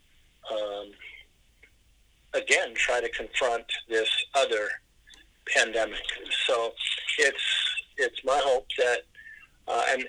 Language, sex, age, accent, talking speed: English, male, 50-69, American, 95 wpm